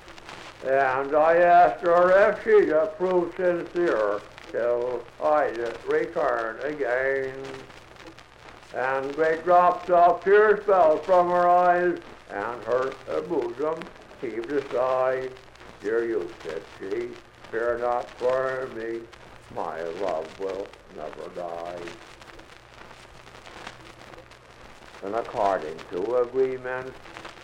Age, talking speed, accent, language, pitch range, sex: 60-79, 95 wpm, American, English, 125-175 Hz, male